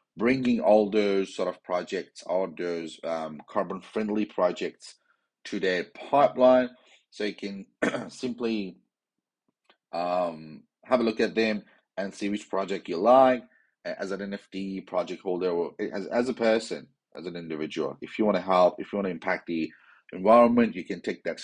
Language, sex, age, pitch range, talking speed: English, male, 30-49, 90-110 Hz, 170 wpm